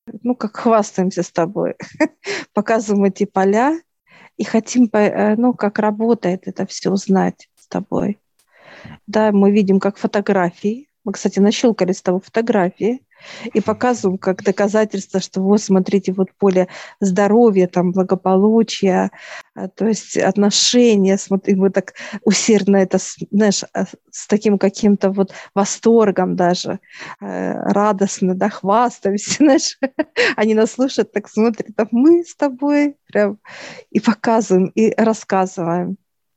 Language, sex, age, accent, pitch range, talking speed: Russian, female, 50-69, native, 195-220 Hz, 120 wpm